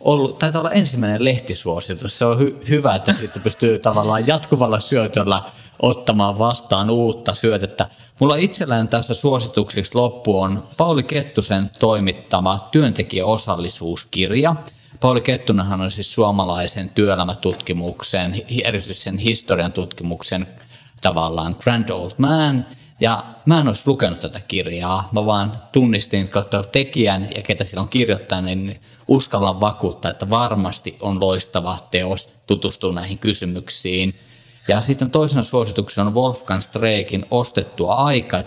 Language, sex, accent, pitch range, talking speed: Finnish, male, native, 95-120 Hz, 125 wpm